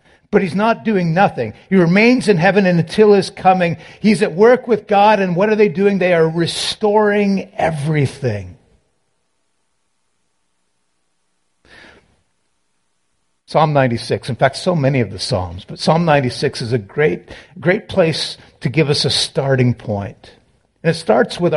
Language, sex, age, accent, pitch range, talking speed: English, male, 50-69, American, 125-185 Hz, 150 wpm